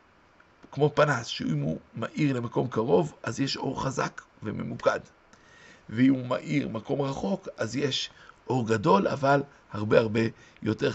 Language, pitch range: Hebrew, 125-170 Hz